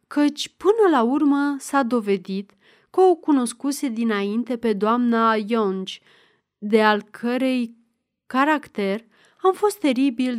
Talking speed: 115 wpm